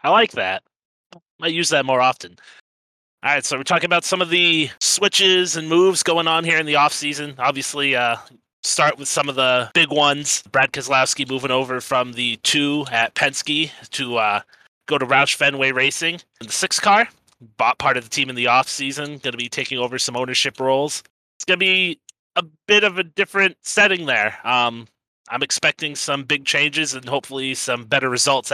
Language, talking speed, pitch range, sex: English, 195 wpm, 130-165 Hz, male